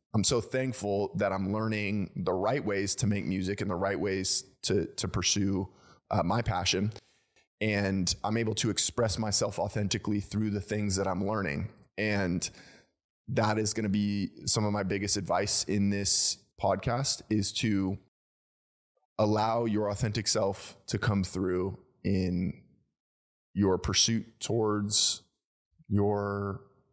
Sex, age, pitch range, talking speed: male, 20-39, 95-110 Hz, 140 wpm